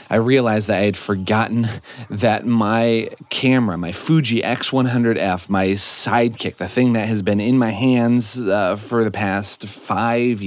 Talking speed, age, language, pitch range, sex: 155 wpm, 30-49, English, 95-125 Hz, male